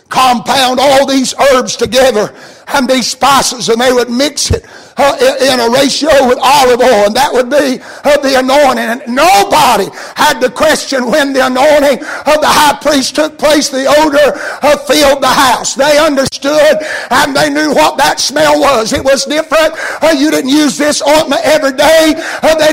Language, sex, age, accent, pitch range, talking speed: English, male, 60-79, American, 265-315 Hz, 165 wpm